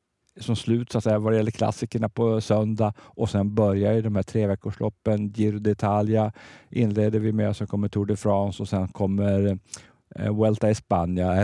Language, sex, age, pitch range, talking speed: Swedish, male, 50-69, 95-110 Hz, 190 wpm